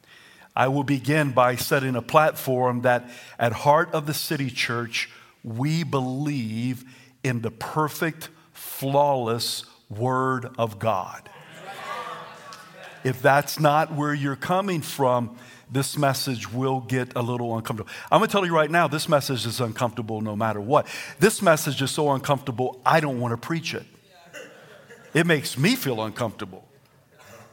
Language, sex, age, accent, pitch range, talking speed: English, male, 50-69, American, 125-160 Hz, 145 wpm